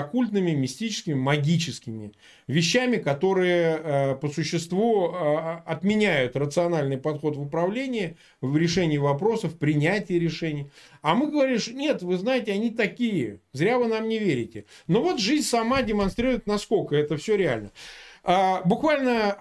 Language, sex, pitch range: Russian, male, 160-225 Hz